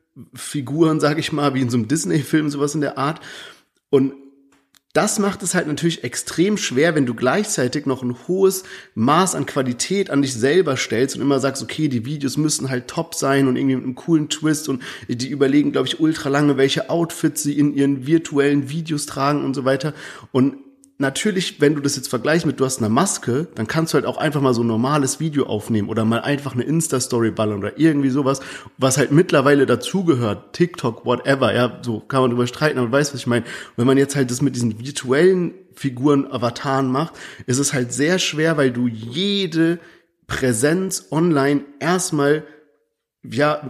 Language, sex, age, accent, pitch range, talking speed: German, male, 40-59, German, 125-155 Hz, 195 wpm